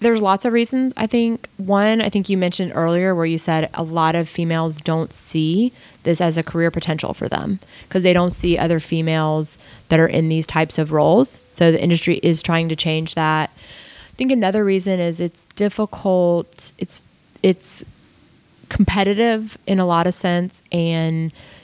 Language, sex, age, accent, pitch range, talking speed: English, female, 20-39, American, 160-190 Hz, 180 wpm